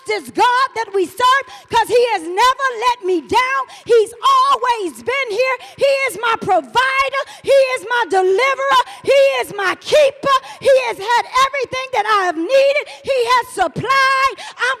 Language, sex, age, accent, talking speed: English, female, 40-59, American, 160 wpm